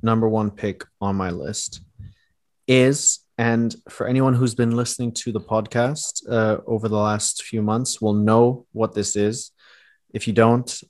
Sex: male